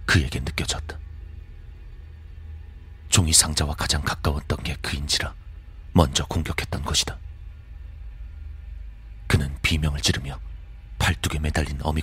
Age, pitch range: 40-59, 75-90 Hz